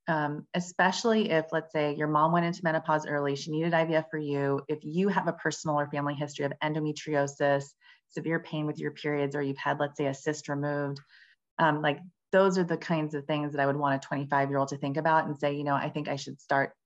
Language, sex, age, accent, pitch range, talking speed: English, female, 30-49, American, 140-160 Hz, 240 wpm